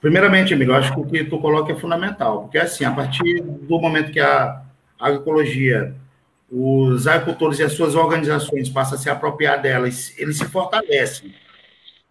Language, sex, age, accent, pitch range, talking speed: Portuguese, male, 50-69, Brazilian, 150-200 Hz, 175 wpm